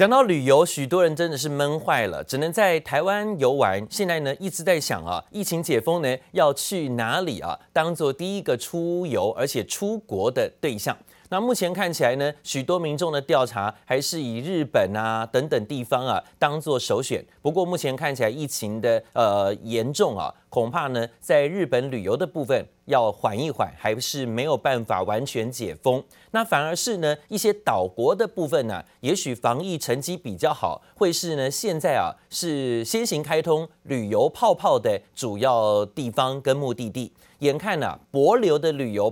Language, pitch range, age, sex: Chinese, 125-185 Hz, 30-49, male